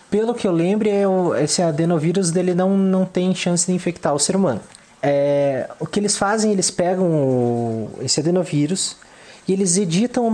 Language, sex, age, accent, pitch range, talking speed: Portuguese, male, 20-39, Brazilian, 145-200 Hz, 165 wpm